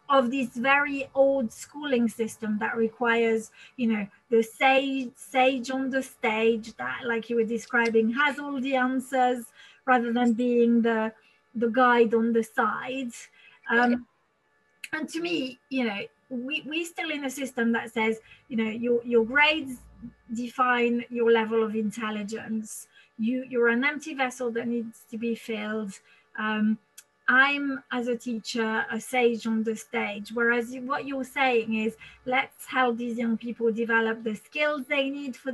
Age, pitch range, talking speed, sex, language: 30-49, 230-265 Hz, 160 wpm, female, English